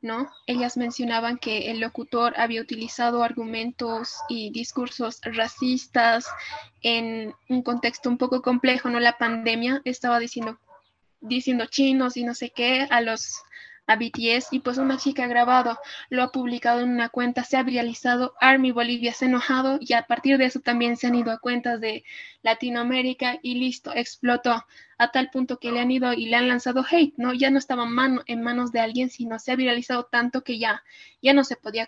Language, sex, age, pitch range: Spanish, female, 20-39, 235-255 Hz